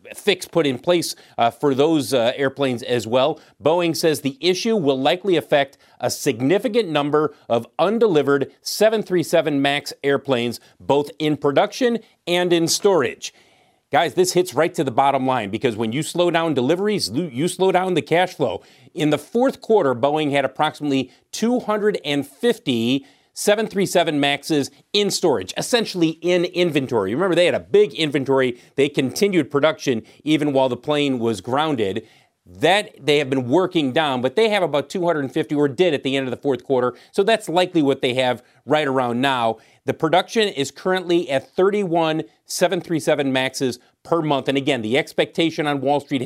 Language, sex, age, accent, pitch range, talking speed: English, male, 40-59, American, 135-180 Hz, 165 wpm